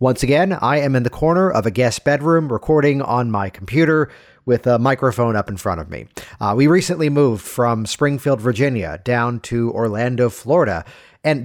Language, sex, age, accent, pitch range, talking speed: English, male, 50-69, American, 110-150 Hz, 185 wpm